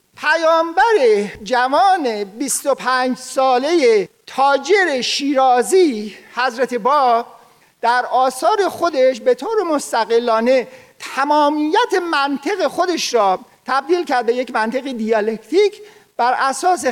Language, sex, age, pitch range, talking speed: Persian, male, 50-69, 240-330 Hz, 95 wpm